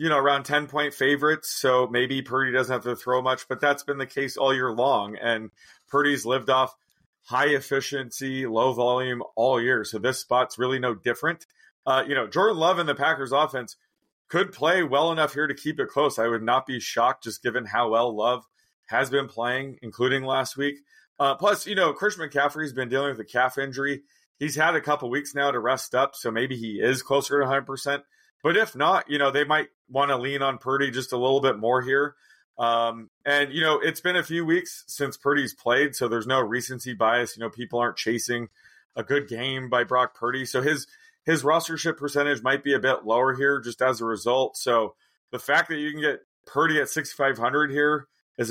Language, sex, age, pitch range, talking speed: English, male, 30-49, 120-145 Hz, 215 wpm